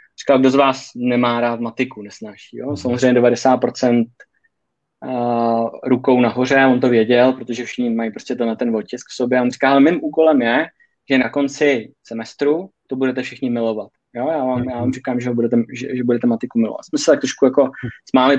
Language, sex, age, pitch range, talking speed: Czech, male, 20-39, 125-150 Hz, 195 wpm